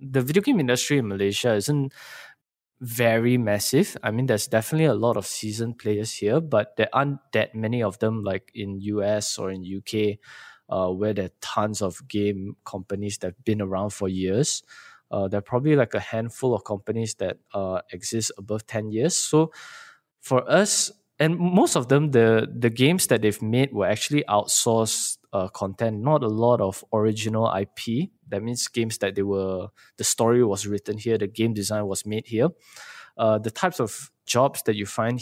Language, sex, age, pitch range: English, male, 20-39, 100-120 Hz